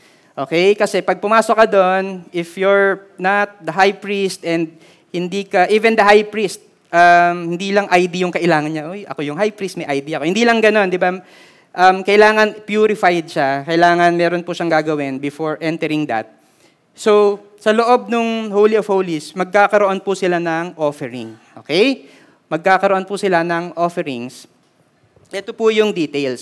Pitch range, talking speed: 165-220 Hz, 165 wpm